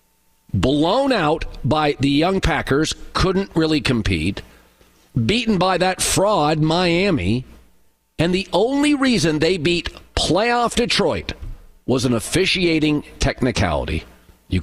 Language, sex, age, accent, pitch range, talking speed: English, male, 50-69, American, 115-180 Hz, 110 wpm